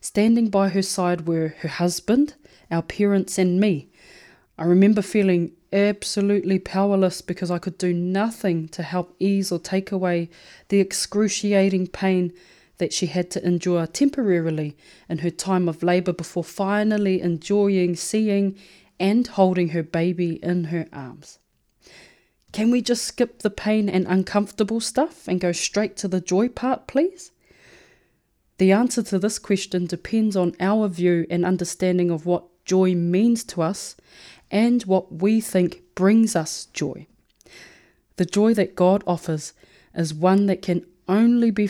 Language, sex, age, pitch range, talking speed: English, female, 20-39, 175-205 Hz, 150 wpm